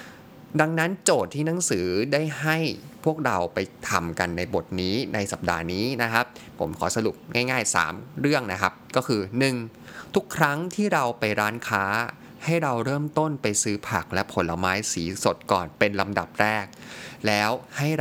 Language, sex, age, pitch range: Thai, male, 20-39, 95-135 Hz